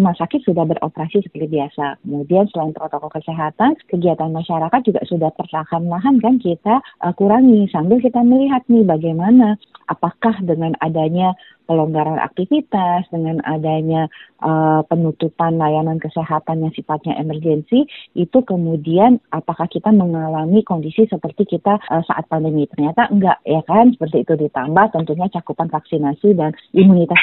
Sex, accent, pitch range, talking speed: female, native, 165-225 Hz, 130 wpm